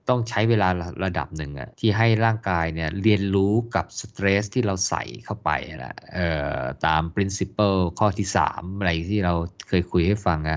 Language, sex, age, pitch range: Thai, male, 20-39, 90-115 Hz